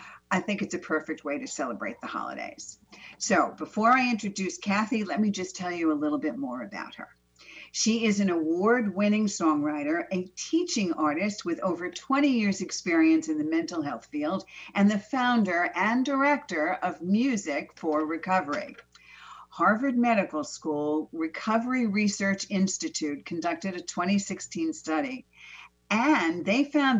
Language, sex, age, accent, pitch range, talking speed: English, female, 50-69, American, 170-260 Hz, 145 wpm